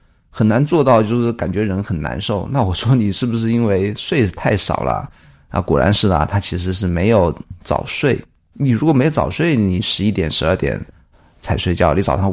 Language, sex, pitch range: Chinese, male, 90-115 Hz